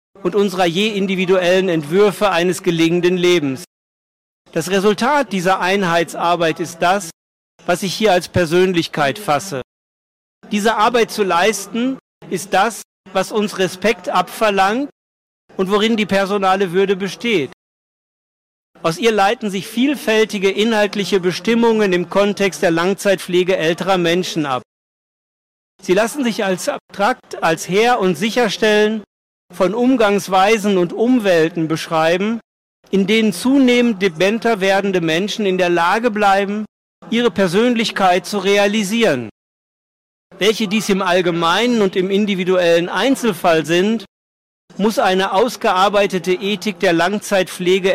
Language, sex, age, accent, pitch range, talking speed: Italian, male, 50-69, German, 180-215 Hz, 115 wpm